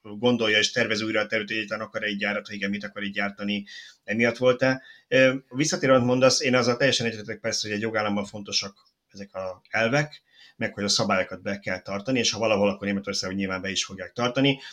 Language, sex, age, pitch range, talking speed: Hungarian, male, 30-49, 105-130 Hz, 200 wpm